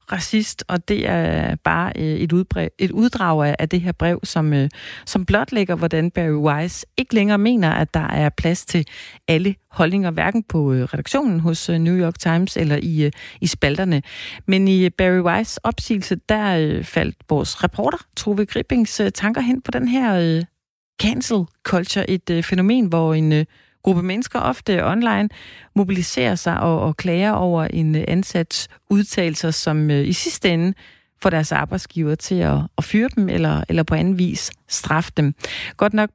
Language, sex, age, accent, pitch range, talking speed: Danish, female, 40-59, native, 160-205 Hz, 155 wpm